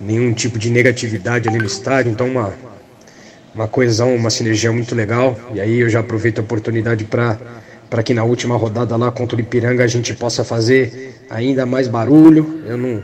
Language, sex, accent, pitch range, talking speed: Portuguese, male, Brazilian, 115-125 Hz, 185 wpm